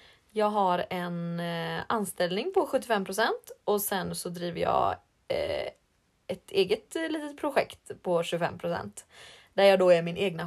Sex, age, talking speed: female, 20-39, 145 wpm